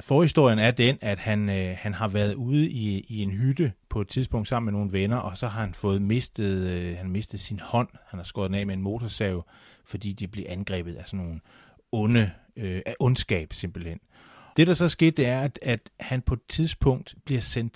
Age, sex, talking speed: 30-49, male, 225 wpm